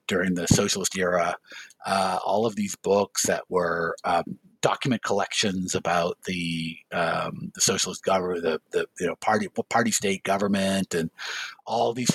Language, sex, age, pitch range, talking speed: English, male, 50-69, 115-190 Hz, 135 wpm